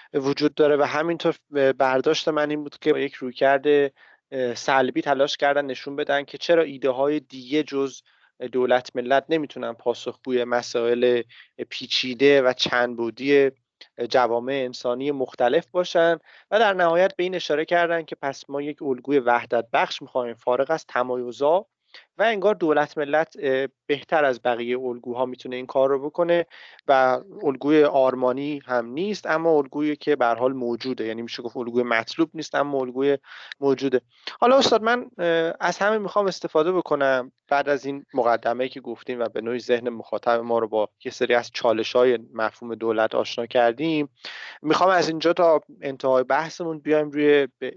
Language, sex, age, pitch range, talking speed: Persian, male, 30-49, 125-150 Hz, 155 wpm